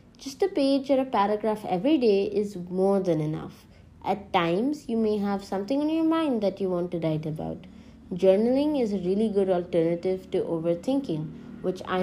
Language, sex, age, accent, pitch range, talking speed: English, female, 20-39, Indian, 175-225 Hz, 185 wpm